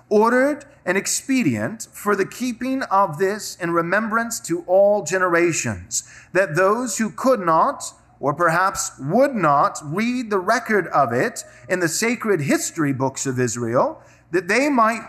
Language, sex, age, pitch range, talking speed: English, male, 30-49, 155-215 Hz, 145 wpm